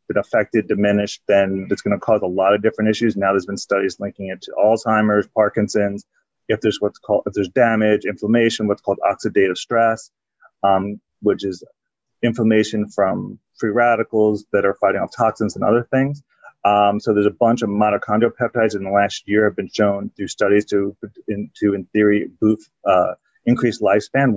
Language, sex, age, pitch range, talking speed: English, male, 30-49, 100-115 Hz, 185 wpm